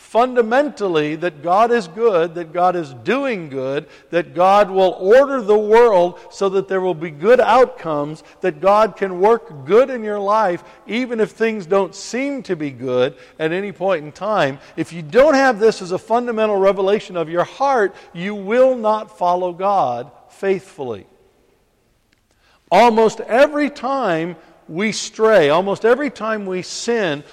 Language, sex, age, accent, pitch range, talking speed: English, male, 60-79, American, 170-220 Hz, 160 wpm